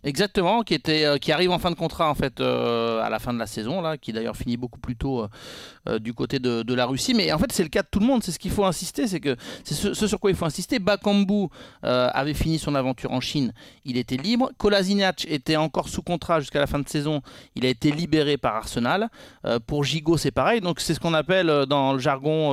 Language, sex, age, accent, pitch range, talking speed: French, male, 30-49, French, 130-175 Hz, 260 wpm